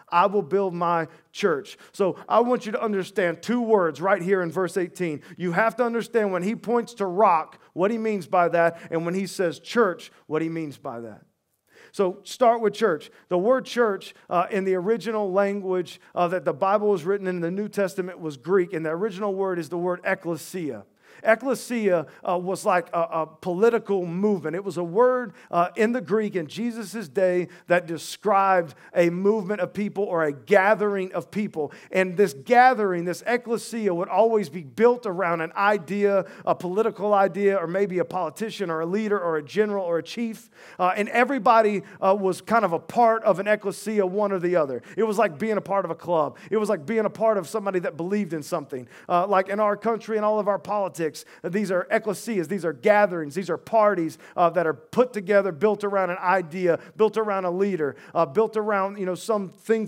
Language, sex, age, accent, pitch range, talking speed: English, male, 40-59, American, 175-215 Hz, 210 wpm